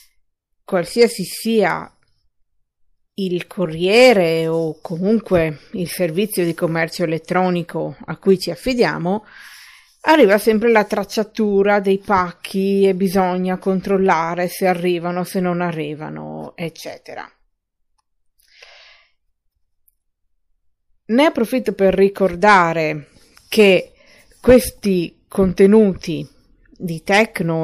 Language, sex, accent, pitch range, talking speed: Italian, female, native, 170-210 Hz, 85 wpm